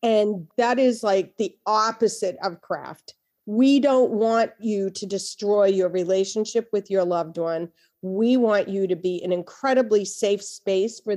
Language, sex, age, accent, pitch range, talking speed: English, female, 40-59, American, 185-225 Hz, 160 wpm